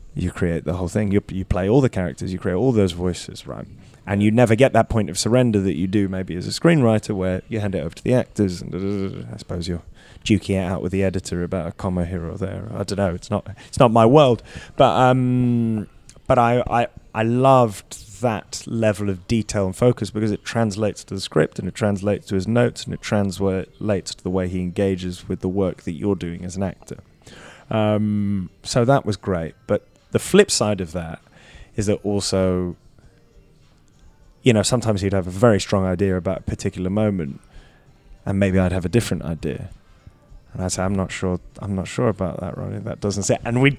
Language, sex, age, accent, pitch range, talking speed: English, male, 20-39, British, 95-120 Hz, 215 wpm